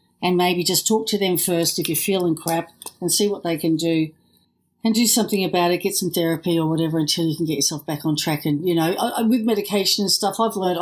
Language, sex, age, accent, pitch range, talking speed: English, female, 50-69, Australian, 170-215 Hz, 255 wpm